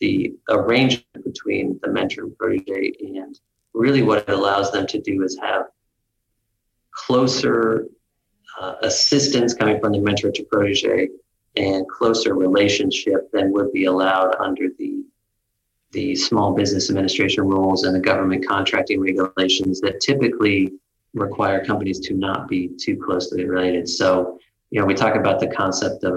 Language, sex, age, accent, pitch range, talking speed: English, male, 30-49, American, 95-110 Hz, 145 wpm